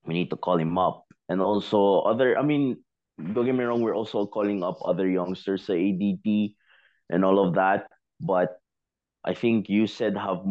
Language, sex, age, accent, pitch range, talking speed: Filipino, male, 20-39, native, 85-100 Hz, 190 wpm